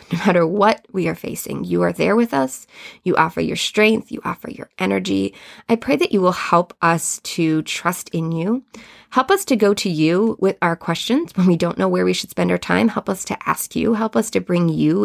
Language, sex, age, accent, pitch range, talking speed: English, female, 20-39, American, 160-205 Hz, 235 wpm